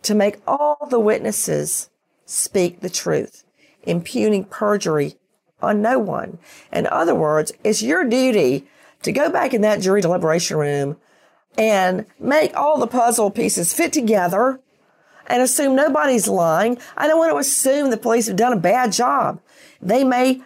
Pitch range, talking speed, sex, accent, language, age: 180-250 Hz, 155 wpm, female, American, English, 40-59